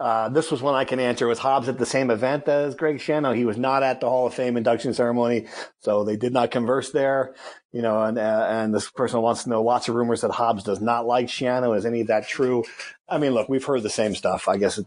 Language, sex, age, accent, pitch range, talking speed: English, male, 40-59, American, 110-135 Hz, 270 wpm